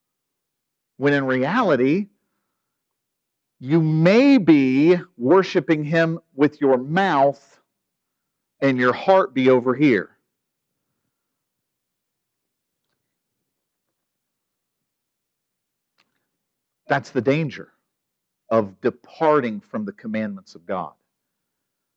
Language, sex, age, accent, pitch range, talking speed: English, male, 50-69, American, 135-195 Hz, 75 wpm